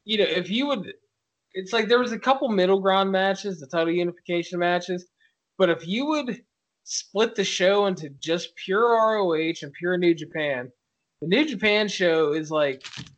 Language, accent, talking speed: English, American, 180 wpm